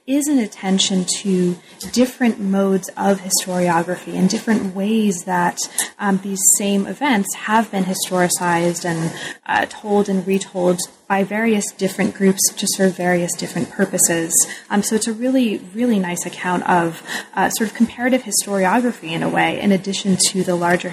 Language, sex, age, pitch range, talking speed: English, female, 20-39, 180-220 Hz, 160 wpm